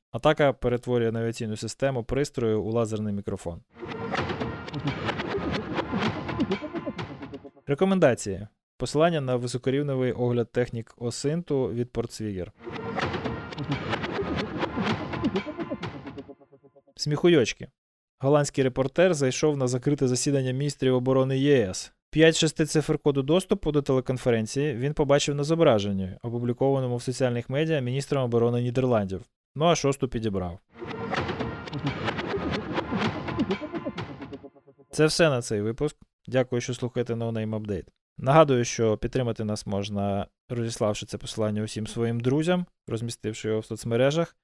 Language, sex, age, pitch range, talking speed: Ukrainian, male, 20-39, 115-140 Hz, 100 wpm